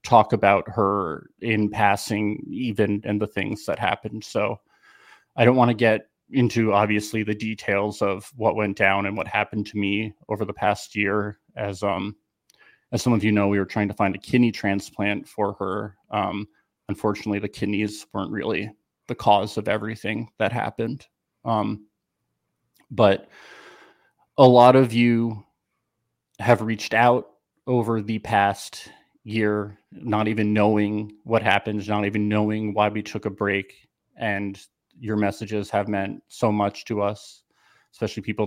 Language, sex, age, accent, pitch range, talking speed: English, male, 30-49, American, 100-110 Hz, 155 wpm